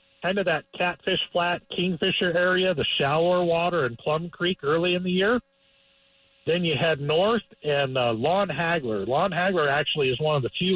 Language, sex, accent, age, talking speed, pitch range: English, male, American, 50-69, 185 wpm, 135-185 Hz